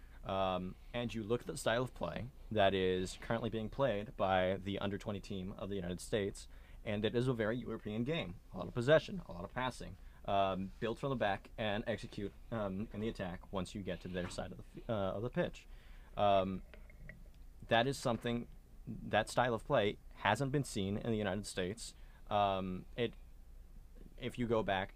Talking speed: 195 wpm